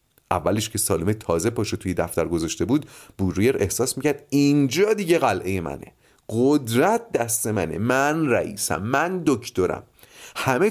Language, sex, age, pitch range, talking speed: Persian, male, 30-49, 95-150 Hz, 135 wpm